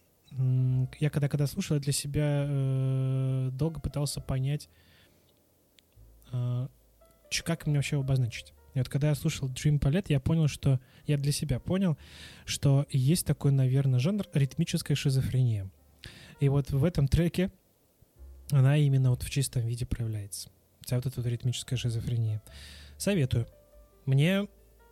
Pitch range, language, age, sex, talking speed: 125-150 Hz, Russian, 20-39, male, 130 wpm